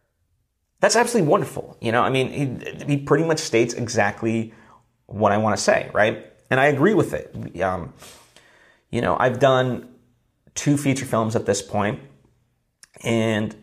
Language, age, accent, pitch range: English, 30-49, American, 105-125 Hz